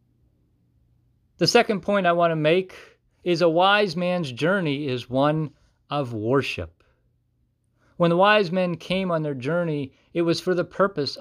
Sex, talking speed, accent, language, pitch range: male, 155 wpm, American, English, 120-165 Hz